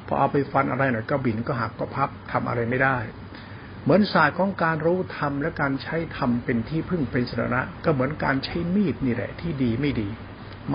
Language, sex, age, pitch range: Thai, male, 60-79, 115-145 Hz